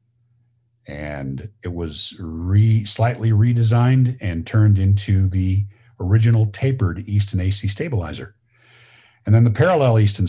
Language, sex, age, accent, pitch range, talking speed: English, male, 50-69, American, 100-120 Hz, 110 wpm